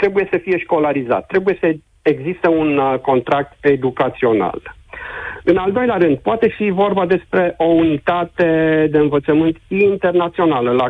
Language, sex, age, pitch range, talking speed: Romanian, male, 50-69, 155-200 Hz, 130 wpm